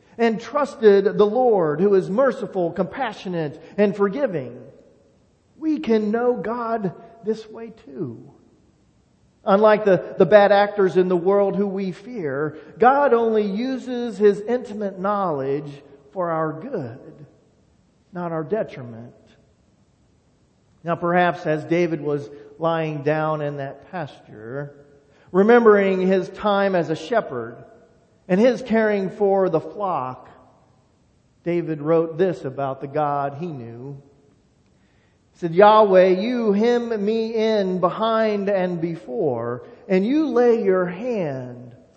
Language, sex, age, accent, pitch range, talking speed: English, male, 40-59, American, 155-215 Hz, 120 wpm